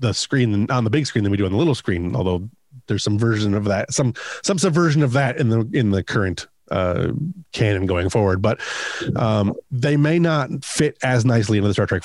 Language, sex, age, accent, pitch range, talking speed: English, male, 30-49, American, 110-145 Hz, 225 wpm